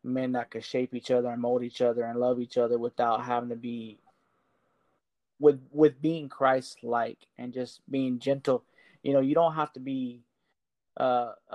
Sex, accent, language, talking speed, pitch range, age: male, American, English, 175 wpm, 120-130 Hz, 20-39